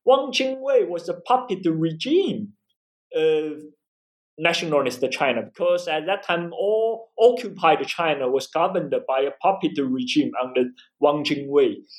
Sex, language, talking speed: male, English, 125 wpm